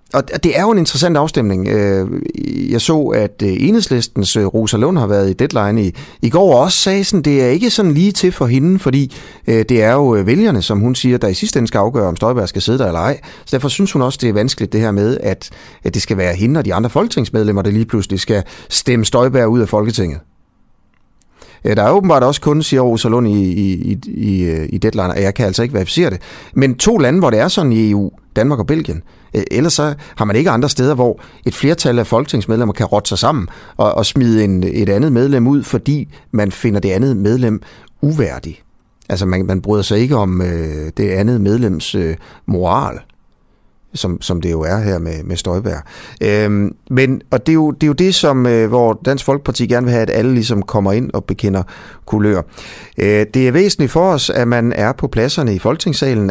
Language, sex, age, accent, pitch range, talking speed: Danish, male, 30-49, native, 100-135 Hz, 215 wpm